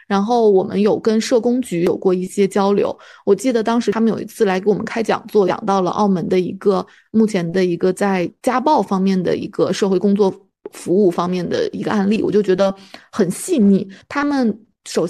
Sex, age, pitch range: female, 20-39, 195-230 Hz